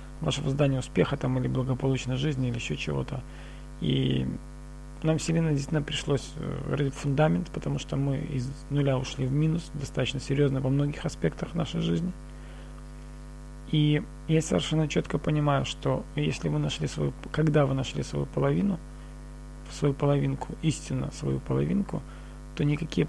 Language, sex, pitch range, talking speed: Russian, male, 130-150 Hz, 140 wpm